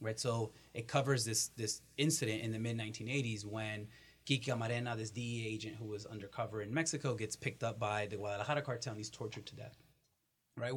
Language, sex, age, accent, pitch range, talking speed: English, male, 30-49, American, 105-135 Hz, 195 wpm